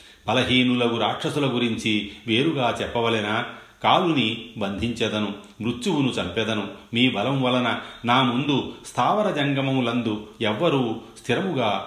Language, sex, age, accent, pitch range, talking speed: Telugu, male, 40-59, native, 100-130 Hz, 90 wpm